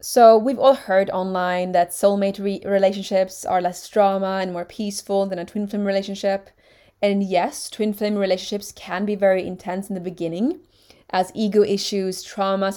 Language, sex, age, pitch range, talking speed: English, female, 20-39, 190-225 Hz, 165 wpm